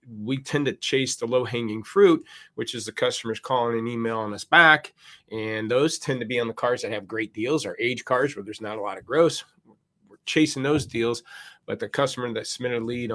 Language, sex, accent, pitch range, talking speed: English, male, American, 115-140 Hz, 230 wpm